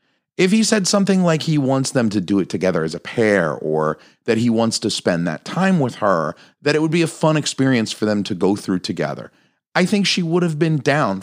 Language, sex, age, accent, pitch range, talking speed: English, male, 40-59, American, 105-165 Hz, 240 wpm